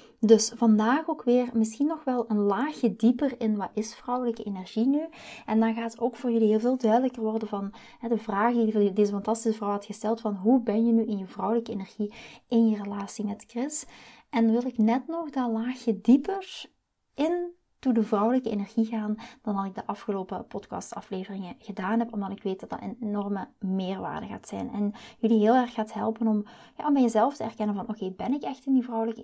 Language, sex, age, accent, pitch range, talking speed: Dutch, female, 20-39, Dutch, 205-240 Hz, 215 wpm